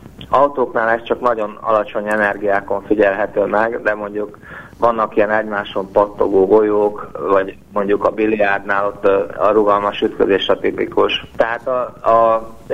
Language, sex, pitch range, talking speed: Hungarian, male, 100-115 Hz, 125 wpm